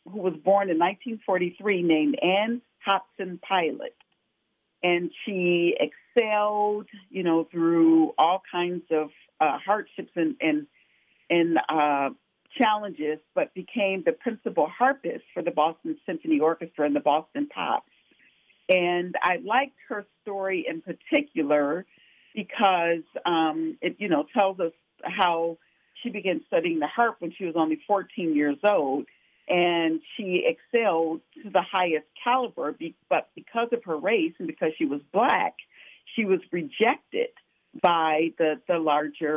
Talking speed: 135 wpm